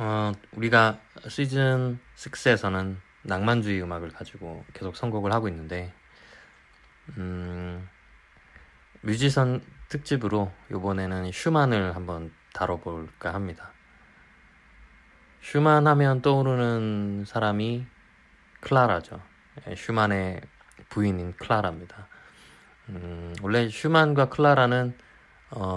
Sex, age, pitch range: male, 20-39, 90-115 Hz